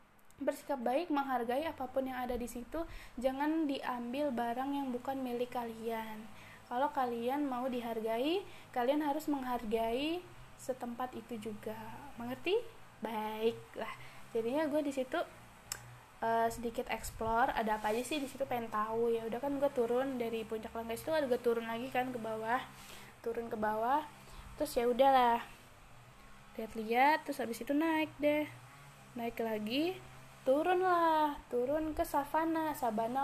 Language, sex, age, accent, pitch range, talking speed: Indonesian, female, 20-39, native, 235-300 Hz, 140 wpm